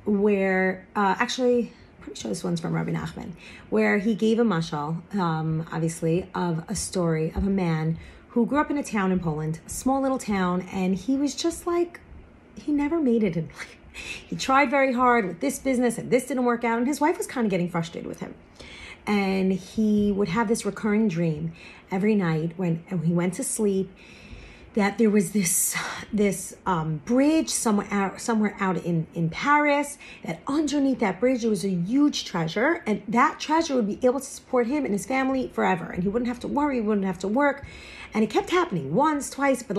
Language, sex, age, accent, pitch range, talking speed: English, female, 30-49, American, 180-255 Hz, 205 wpm